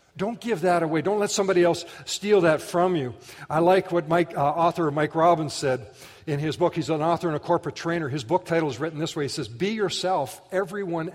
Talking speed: 230 wpm